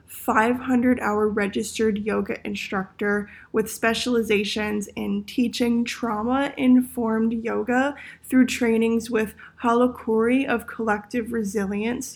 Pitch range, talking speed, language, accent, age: 210-245 Hz, 85 wpm, English, American, 20-39